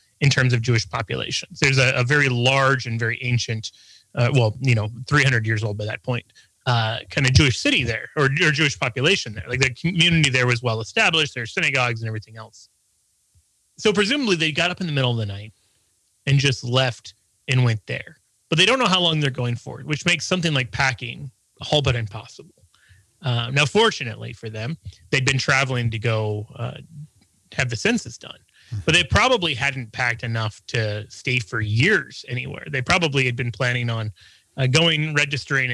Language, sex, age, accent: English, male, 30-49, American